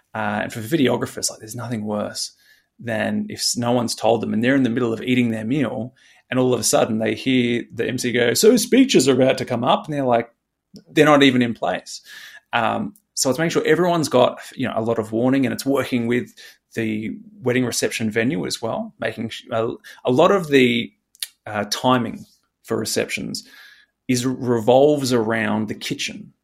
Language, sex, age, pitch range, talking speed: English, male, 20-39, 115-135 Hz, 200 wpm